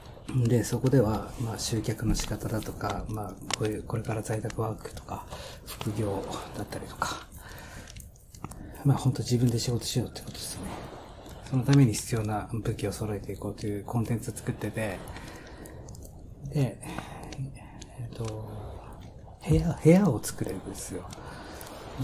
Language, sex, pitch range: Japanese, male, 100-130 Hz